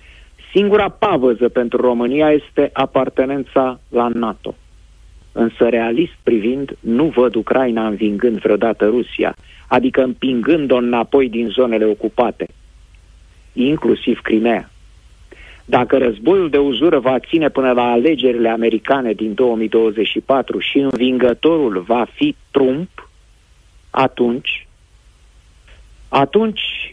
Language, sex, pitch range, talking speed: Romanian, male, 120-155 Hz, 100 wpm